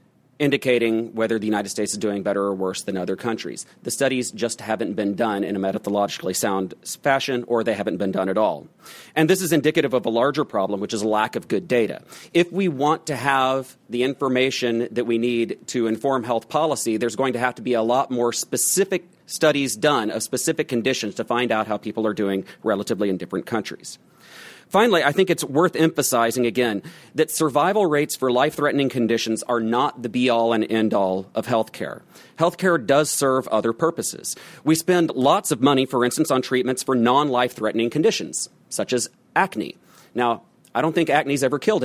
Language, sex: English, male